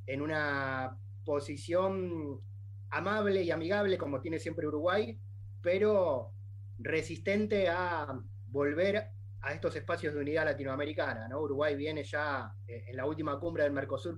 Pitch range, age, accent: 100-155 Hz, 30-49, Argentinian